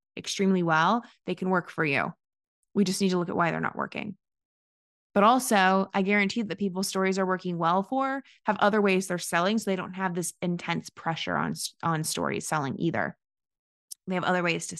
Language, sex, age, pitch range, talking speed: English, female, 20-39, 175-200 Hz, 205 wpm